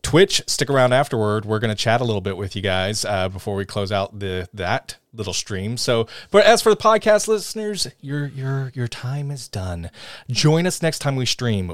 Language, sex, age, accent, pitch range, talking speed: English, male, 30-49, American, 100-135 Hz, 215 wpm